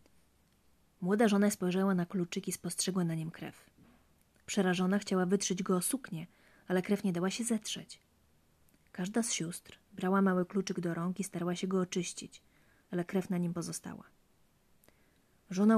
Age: 30-49